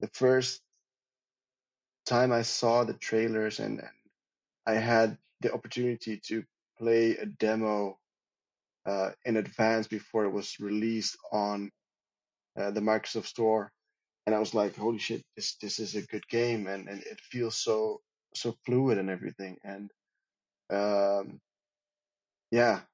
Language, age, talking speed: English, 20-39, 140 wpm